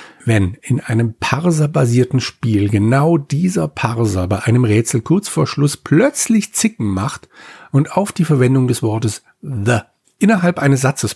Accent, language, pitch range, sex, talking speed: German, German, 105-145 Hz, male, 145 wpm